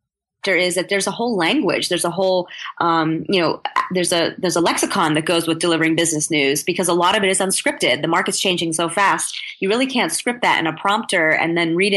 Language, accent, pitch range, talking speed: English, American, 170-205 Hz, 230 wpm